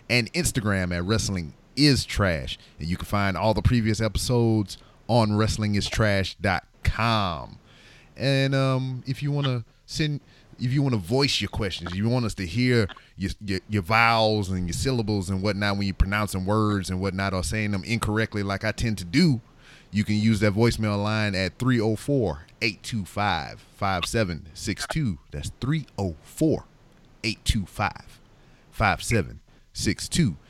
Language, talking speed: English, 145 wpm